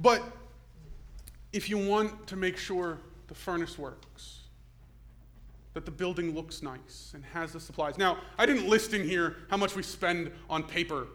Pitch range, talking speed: 135-180 Hz, 165 wpm